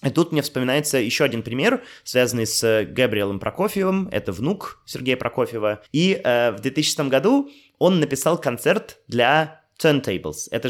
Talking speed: 140 wpm